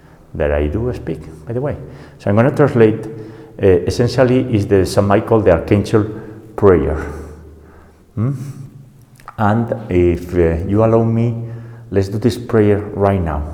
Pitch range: 85-110 Hz